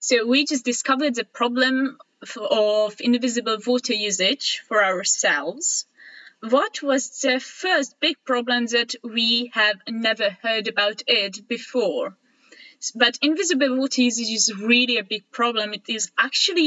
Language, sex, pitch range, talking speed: English, female, 215-265 Hz, 135 wpm